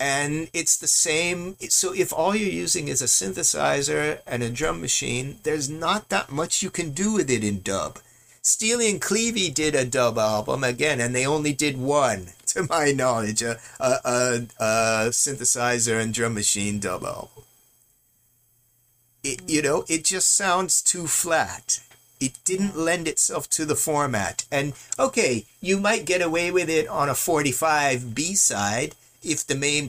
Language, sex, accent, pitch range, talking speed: English, male, American, 120-160 Hz, 165 wpm